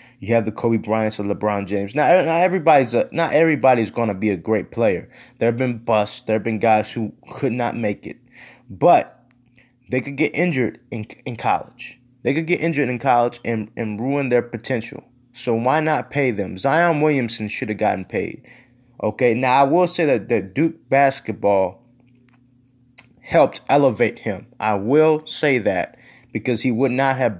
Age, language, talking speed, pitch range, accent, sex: 20-39, English, 180 wpm, 110-130 Hz, American, male